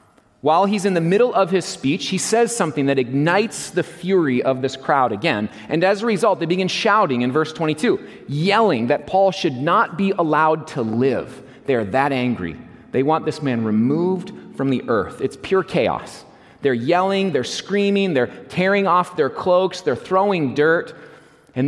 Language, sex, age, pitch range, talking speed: English, male, 30-49, 135-185 Hz, 185 wpm